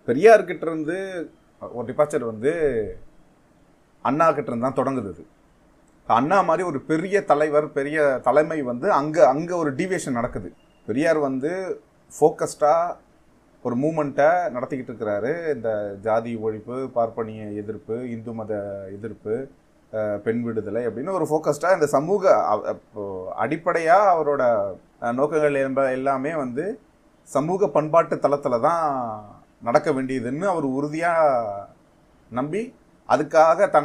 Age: 30-49